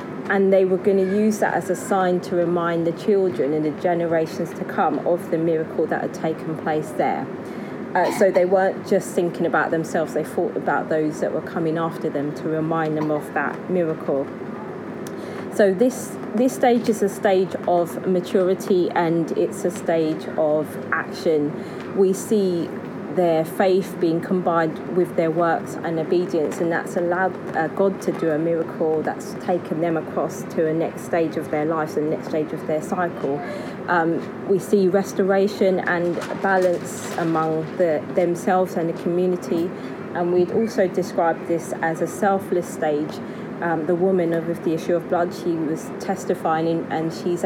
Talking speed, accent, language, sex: 170 wpm, British, English, female